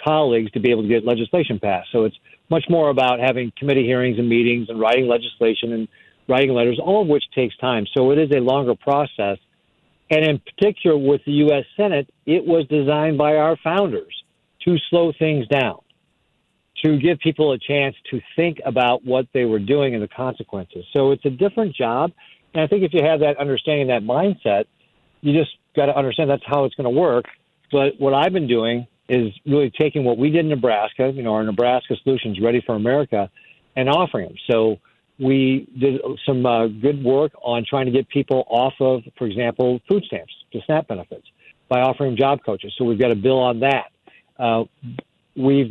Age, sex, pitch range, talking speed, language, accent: 50-69, male, 125-155 Hz, 200 wpm, English, American